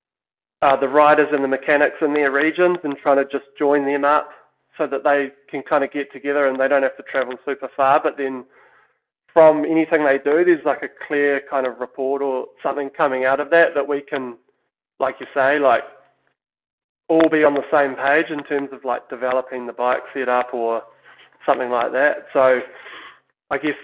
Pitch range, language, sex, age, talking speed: 130-145 Hz, English, male, 20-39, 200 wpm